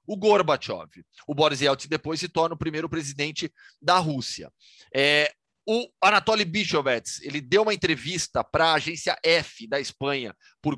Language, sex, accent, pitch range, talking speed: Portuguese, male, Brazilian, 145-185 Hz, 150 wpm